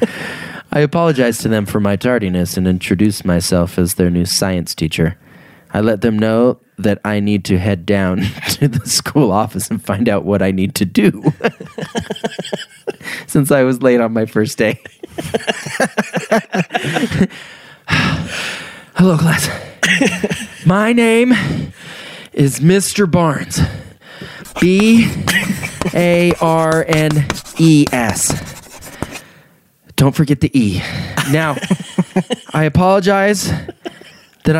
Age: 30-49